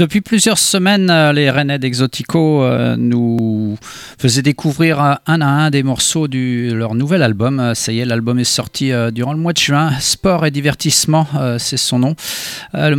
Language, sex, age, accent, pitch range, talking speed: French, male, 40-59, French, 125-155 Hz, 165 wpm